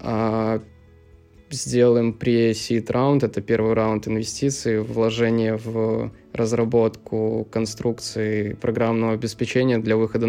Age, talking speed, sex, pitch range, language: 20-39, 100 wpm, male, 110-115 Hz, Russian